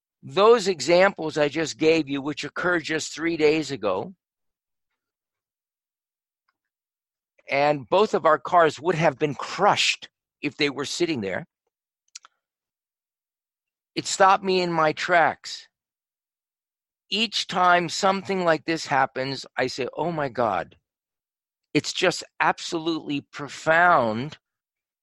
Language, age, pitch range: English, 50-69, 150-190 Hz